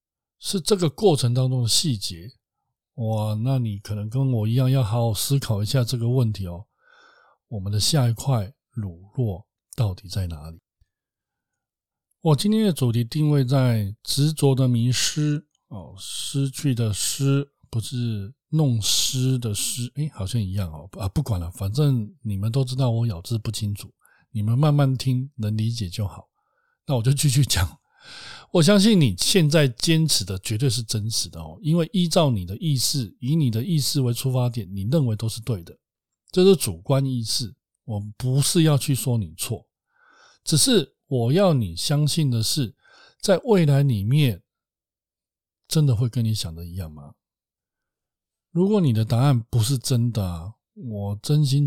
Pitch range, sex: 105-140 Hz, male